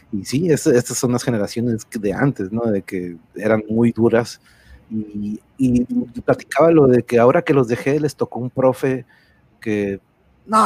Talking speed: 170 wpm